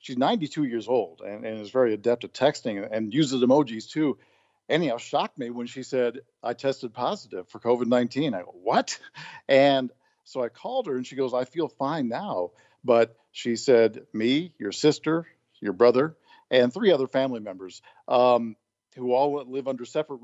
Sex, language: male, English